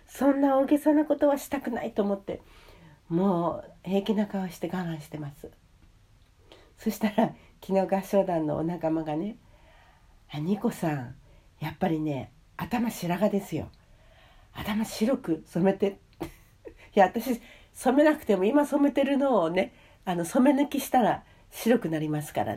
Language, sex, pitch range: Japanese, female, 150-225 Hz